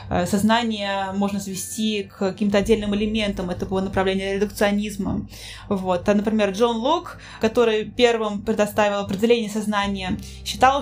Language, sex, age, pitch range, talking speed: Russian, female, 20-39, 205-240 Hz, 120 wpm